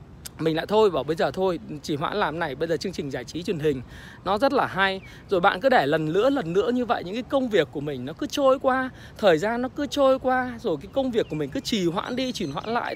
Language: Vietnamese